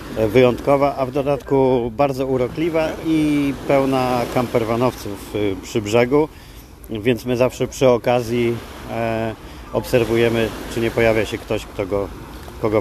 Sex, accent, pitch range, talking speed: male, native, 110-130 Hz, 120 wpm